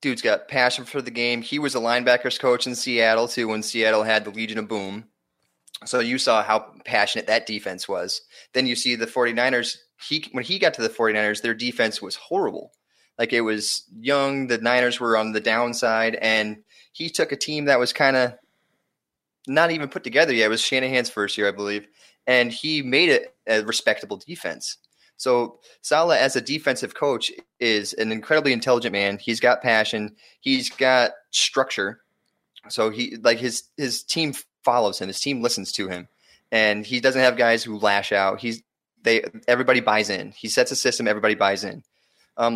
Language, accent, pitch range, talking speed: English, American, 110-135 Hz, 190 wpm